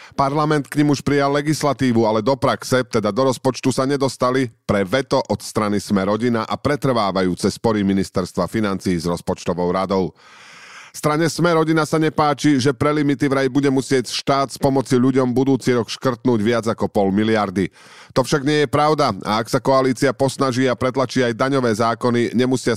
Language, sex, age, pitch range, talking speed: Slovak, male, 40-59, 110-140 Hz, 175 wpm